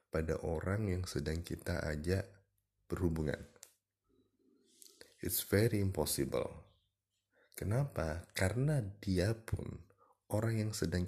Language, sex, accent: Indonesian, male, native